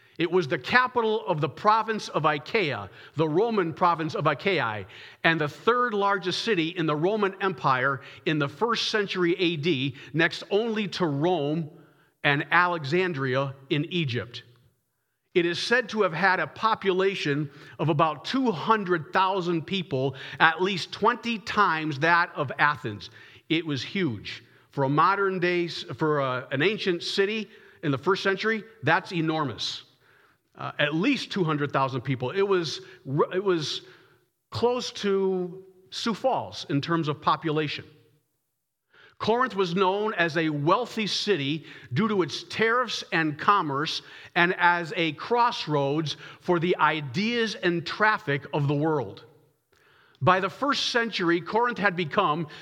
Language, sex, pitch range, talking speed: English, male, 150-195 Hz, 140 wpm